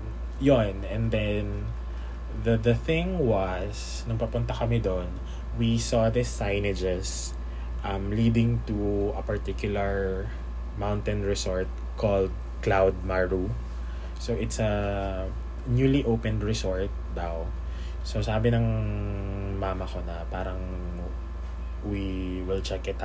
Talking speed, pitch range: 110 wpm, 85-110 Hz